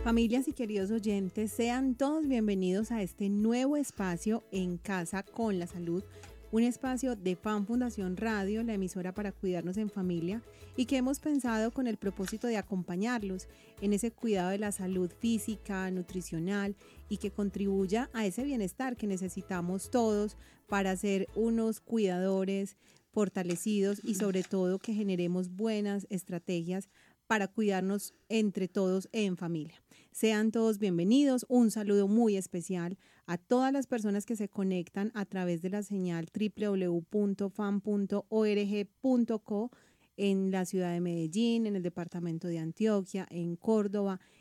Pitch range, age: 190-225 Hz, 30-49